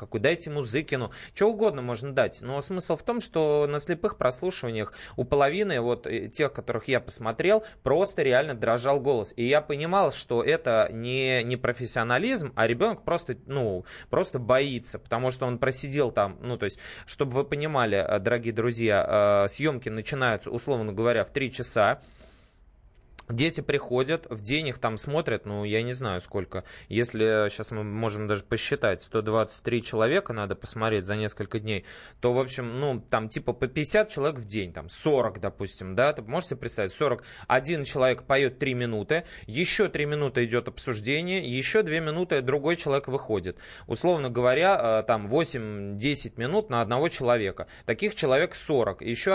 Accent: native